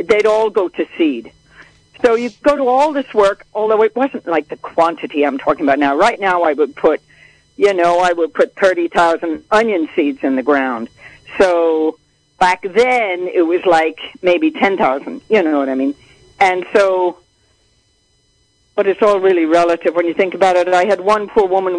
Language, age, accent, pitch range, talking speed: English, 50-69, American, 160-220 Hz, 185 wpm